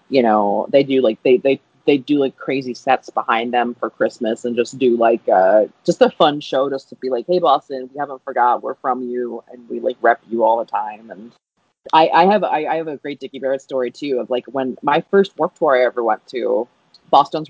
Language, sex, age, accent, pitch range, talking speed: English, female, 30-49, American, 130-175 Hz, 240 wpm